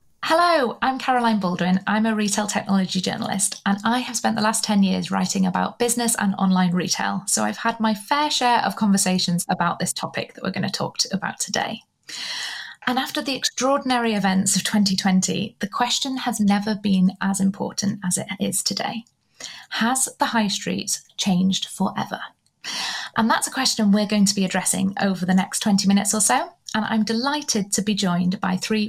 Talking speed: 185 wpm